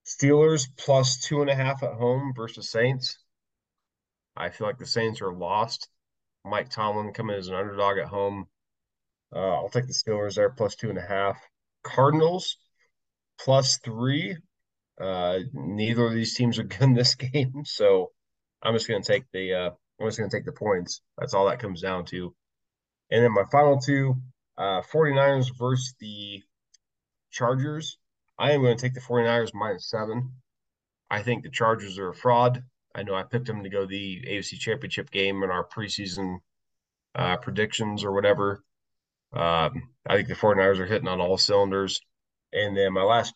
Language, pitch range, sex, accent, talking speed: English, 100-130 Hz, male, American, 175 wpm